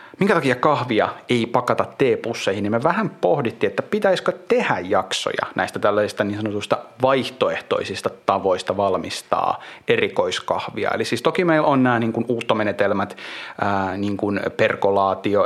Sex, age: male, 30-49